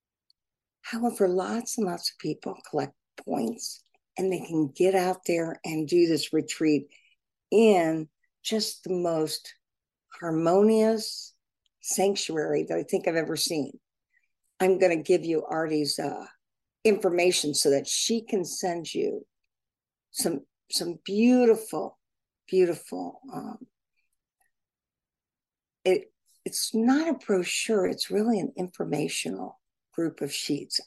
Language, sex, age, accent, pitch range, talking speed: English, female, 60-79, American, 155-220 Hz, 120 wpm